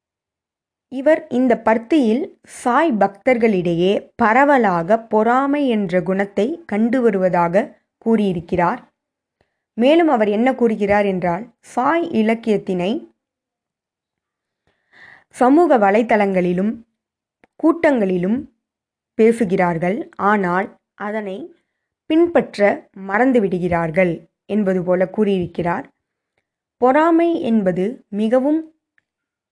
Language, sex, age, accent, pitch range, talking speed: Tamil, female, 20-39, native, 190-255 Hz, 65 wpm